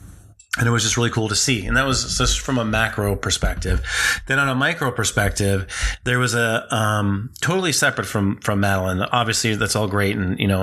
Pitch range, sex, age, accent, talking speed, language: 100-120 Hz, male, 30-49, American, 210 wpm, English